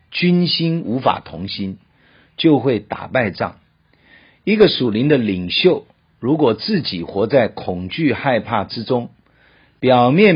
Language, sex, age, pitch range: Chinese, male, 50-69, 110-155 Hz